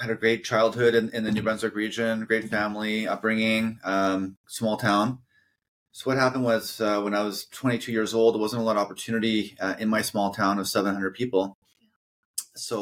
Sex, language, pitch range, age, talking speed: male, English, 95-110 Hz, 30-49, 195 wpm